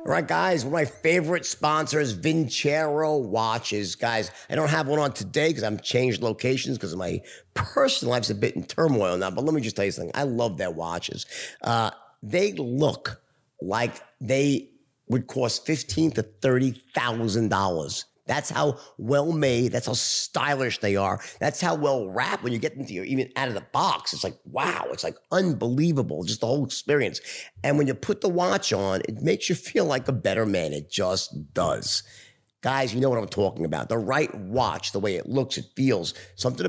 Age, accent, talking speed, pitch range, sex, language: 50-69, American, 195 wpm, 110-150 Hz, male, English